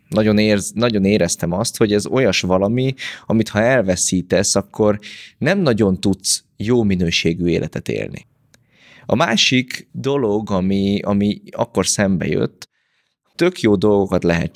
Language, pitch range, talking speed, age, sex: Hungarian, 90-110 Hz, 130 wpm, 20-39, male